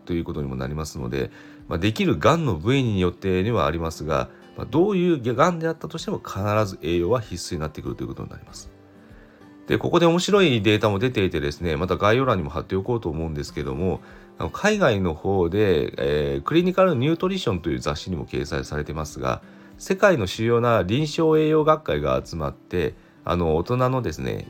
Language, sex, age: Japanese, male, 40-59